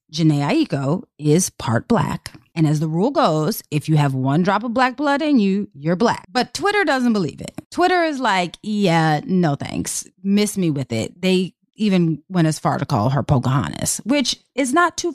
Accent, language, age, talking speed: American, English, 30-49, 200 wpm